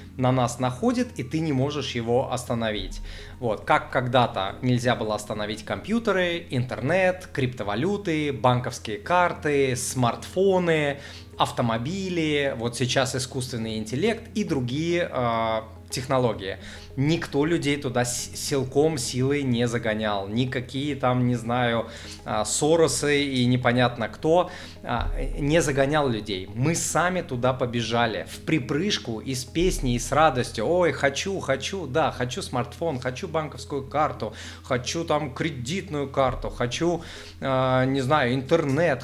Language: Russian